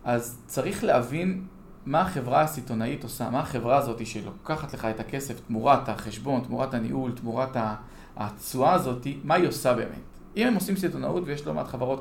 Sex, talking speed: male, 165 wpm